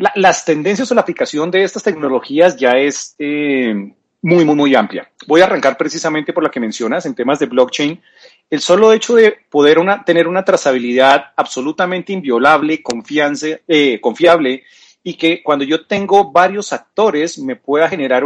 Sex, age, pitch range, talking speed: male, 30-49, 140-200 Hz, 160 wpm